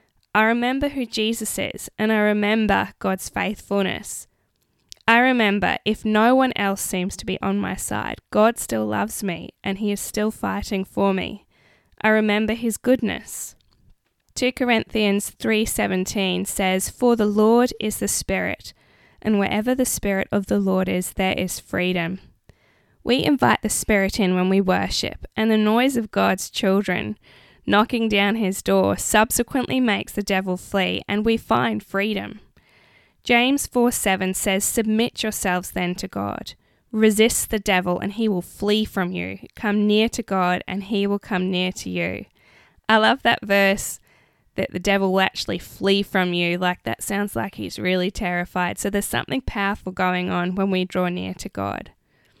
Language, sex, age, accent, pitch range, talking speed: English, female, 10-29, Australian, 185-220 Hz, 165 wpm